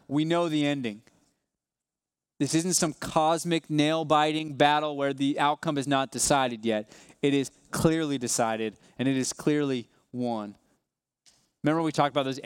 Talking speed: 150 wpm